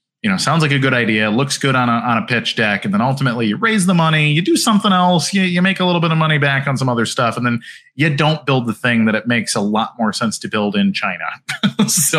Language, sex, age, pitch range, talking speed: English, male, 30-49, 115-165 Hz, 285 wpm